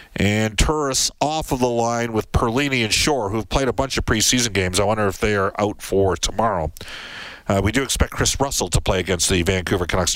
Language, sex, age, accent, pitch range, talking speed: English, male, 50-69, American, 100-140 Hz, 220 wpm